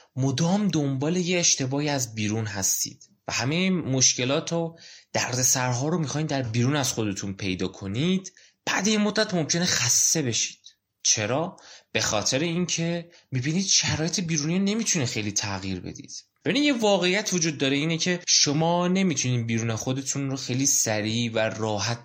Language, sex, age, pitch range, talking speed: Persian, male, 20-39, 110-165 Hz, 150 wpm